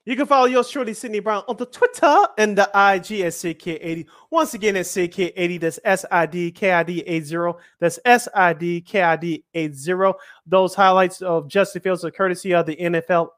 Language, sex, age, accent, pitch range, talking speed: English, male, 30-49, American, 170-220 Hz, 150 wpm